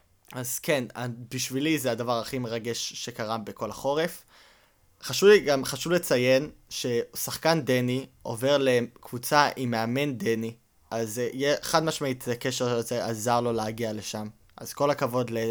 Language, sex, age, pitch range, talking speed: Hebrew, male, 20-39, 115-135 Hz, 125 wpm